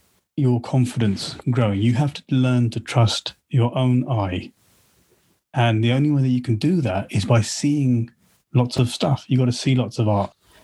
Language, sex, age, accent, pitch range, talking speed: English, male, 30-49, British, 110-130 Hz, 190 wpm